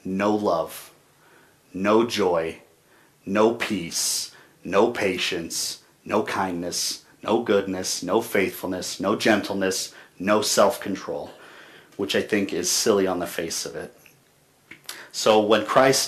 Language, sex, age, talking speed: English, male, 40-59, 115 wpm